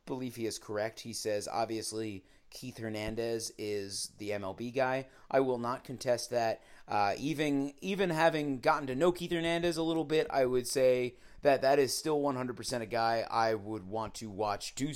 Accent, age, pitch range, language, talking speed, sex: American, 30-49, 115-145 Hz, English, 185 wpm, male